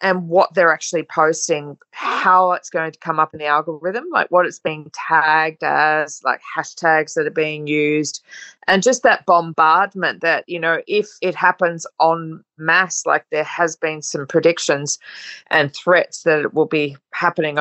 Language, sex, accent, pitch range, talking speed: English, female, Australian, 155-195 Hz, 175 wpm